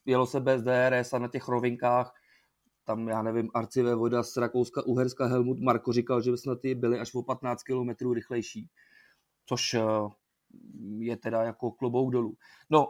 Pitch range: 120-140 Hz